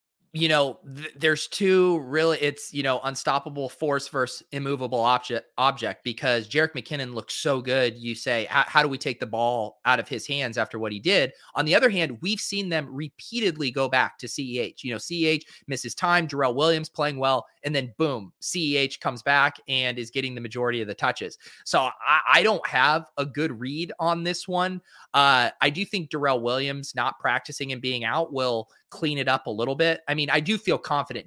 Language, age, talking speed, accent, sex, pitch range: English, 30-49, 205 wpm, American, male, 120-150 Hz